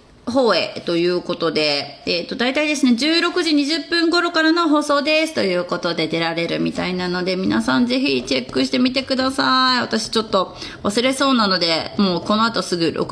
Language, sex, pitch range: Japanese, female, 185-285 Hz